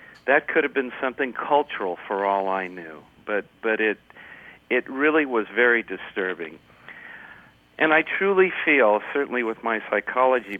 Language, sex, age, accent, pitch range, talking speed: English, male, 50-69, American, 105-140 Hz, 145 wpm